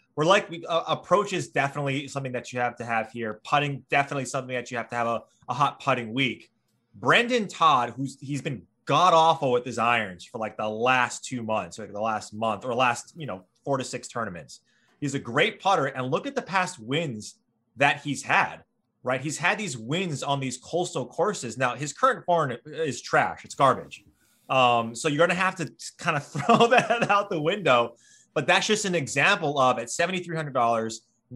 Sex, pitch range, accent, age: male, 120-155 Hz, American, 20-39